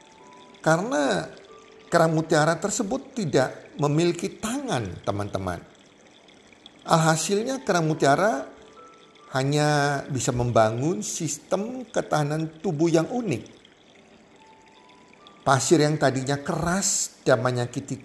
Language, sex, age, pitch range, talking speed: Indonesian, male, 40-59, 140-200 Hz, 85 wpm